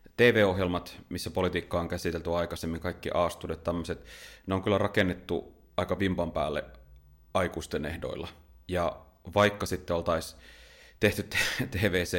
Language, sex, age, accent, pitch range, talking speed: Finnish, male, 30-49, native, 85-100 Hz, 120 wpm